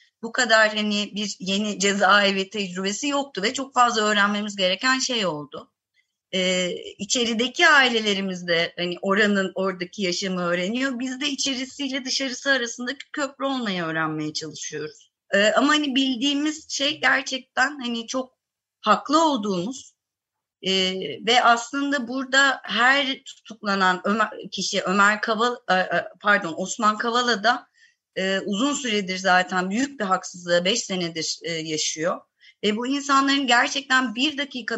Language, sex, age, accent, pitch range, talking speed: Turkish, female, 30-49, native, 190-260 Hz, 125 wpm